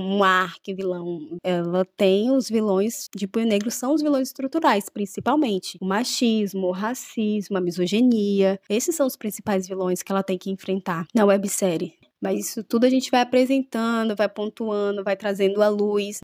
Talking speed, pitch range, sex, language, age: 165 wpm, 195-240 Hz, female, Portuguese, 20-39